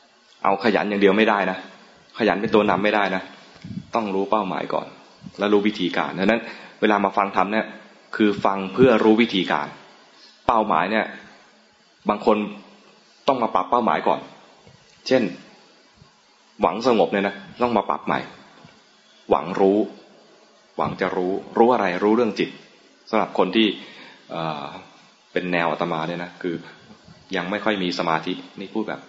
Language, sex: English, male